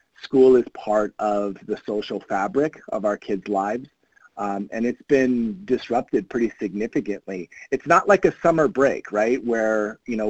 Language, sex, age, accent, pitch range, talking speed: English, male, 30-49, American, 105-130 Hz, 165 wpm